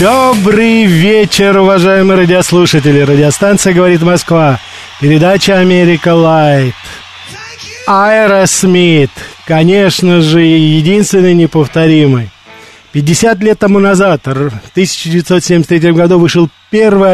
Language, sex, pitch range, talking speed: Russian, male, 150-190 Hz, 85 wpm